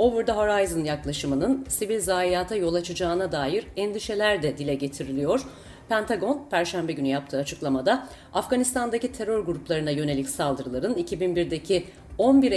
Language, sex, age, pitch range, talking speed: Turkish, female, 40-59, 160-230 Hz, 120 wpm